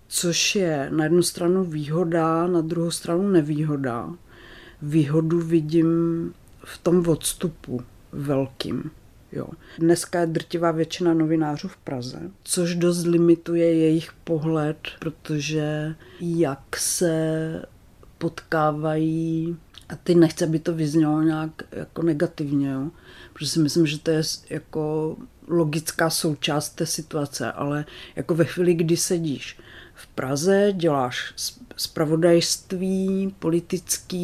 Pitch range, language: 150-170 Hz, Czech